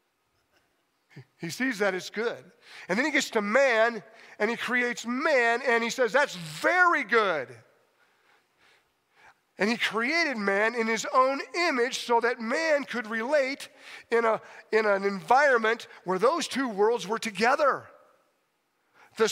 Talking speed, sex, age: 140 wpm, male, 50-69